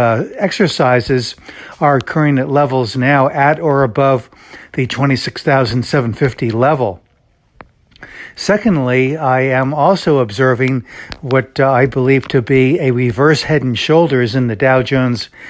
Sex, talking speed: male, 130 wpm